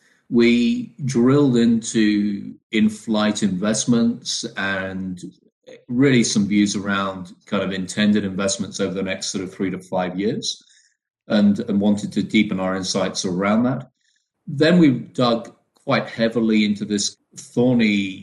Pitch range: 95-115 Hz